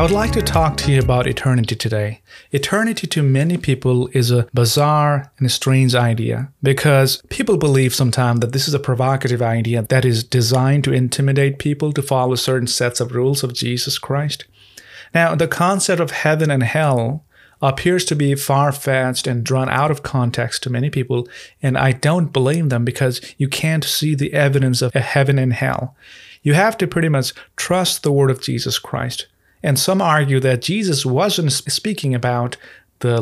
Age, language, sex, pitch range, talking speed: 30-49, English, male, 125-150 Hz, 180 wpm